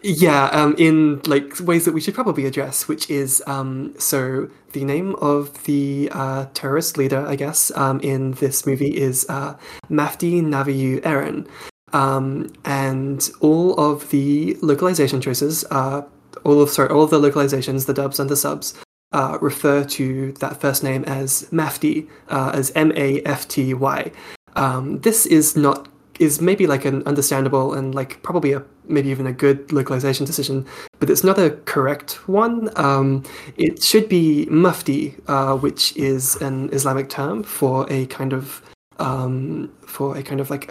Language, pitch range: English, 135-150 Hz